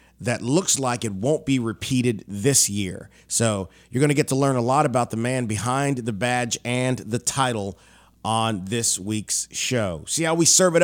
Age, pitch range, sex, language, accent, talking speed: 30-49, 105-135 Hz, male, English, American, 200 wpm